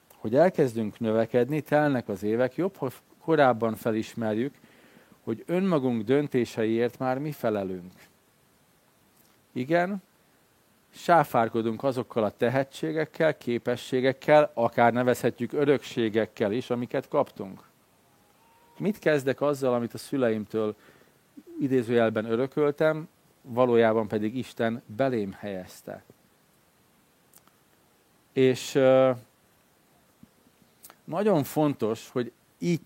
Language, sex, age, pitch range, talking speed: Hungarian, male, 50-69, 115-150 Hz, 85 wpm